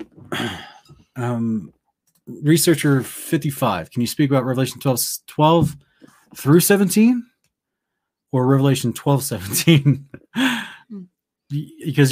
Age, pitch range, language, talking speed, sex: 20-39, 110-140 Hz, English, 85 wpm, male